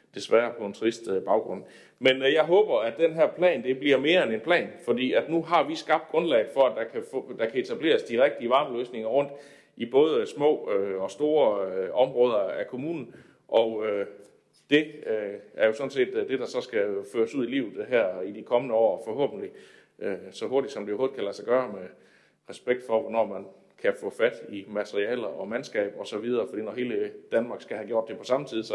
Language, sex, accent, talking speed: Danish, male, native, 205 wpm